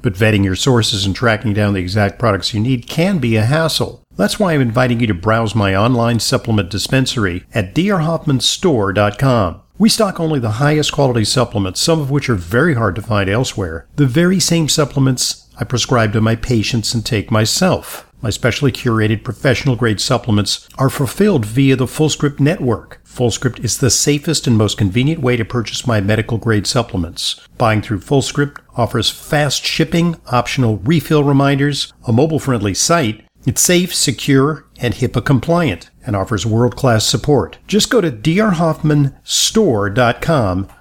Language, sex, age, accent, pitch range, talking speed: English, male, 50-69, American, 110-150 Hz, 155 wpm